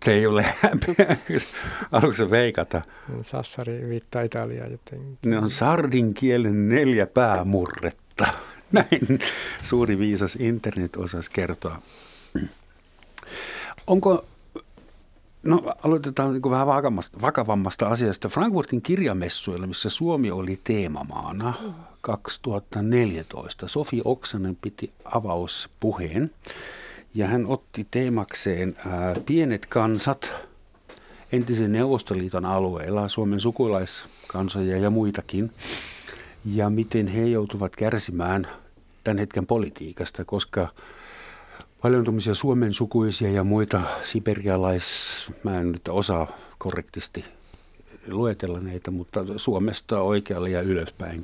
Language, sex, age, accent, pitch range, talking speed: Finnish, male, 60-79, native, 95-120 Hz, 95 wpm